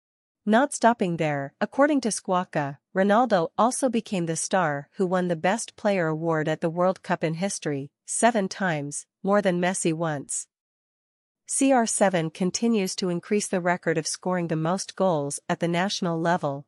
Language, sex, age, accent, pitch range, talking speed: English, female, 40-59, American, 165-205 Hz, 160 wpm